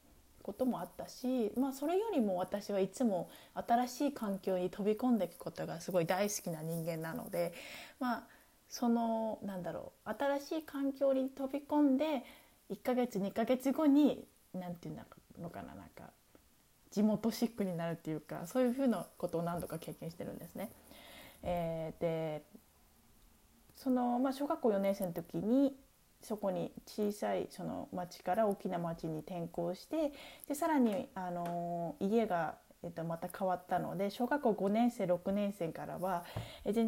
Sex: female